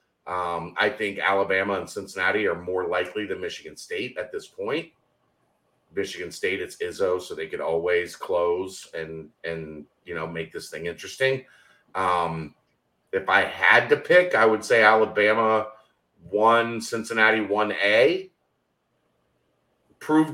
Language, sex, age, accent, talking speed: English, male, 40-59, American, 140 wpm